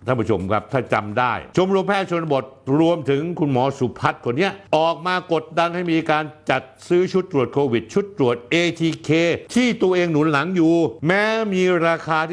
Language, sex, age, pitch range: Thai, male, 60-79, 120-170 Hz